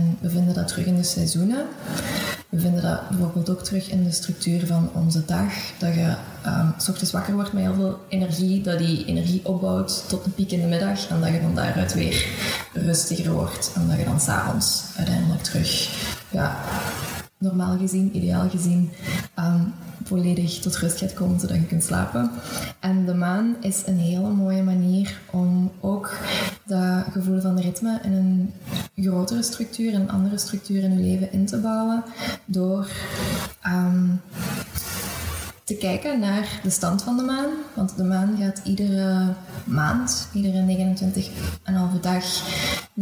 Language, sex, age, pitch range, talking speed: Dutch, female, 20-39, 175-195 Hz, 170 wpm